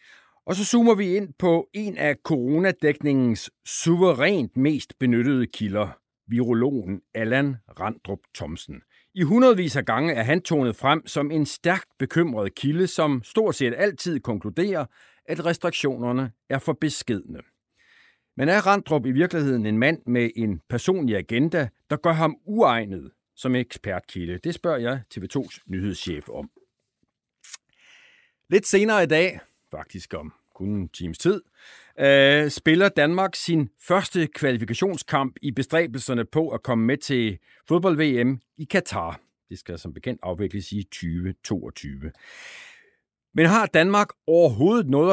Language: Danish